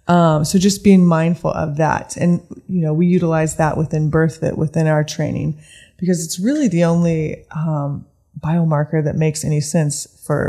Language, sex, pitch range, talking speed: English, female, 155-180 Hz, 175 wpm